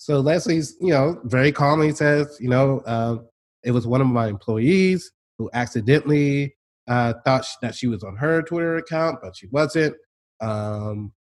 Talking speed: 170 wpm